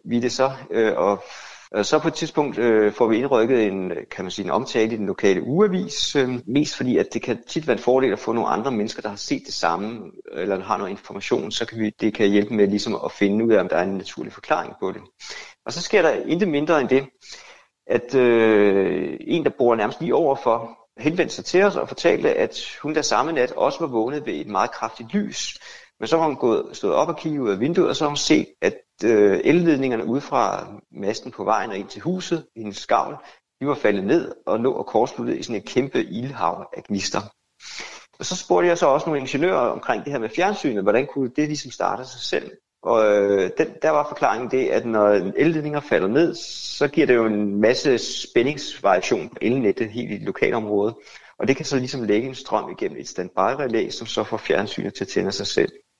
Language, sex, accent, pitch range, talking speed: Danish, male, native, 110-170 Hz, 225 wpm